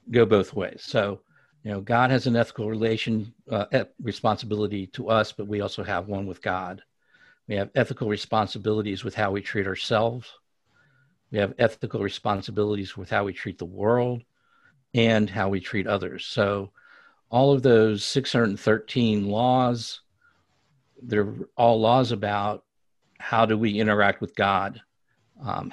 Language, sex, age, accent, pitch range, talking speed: English, male, 50-69, American, 100-115 Hz, 145 wpm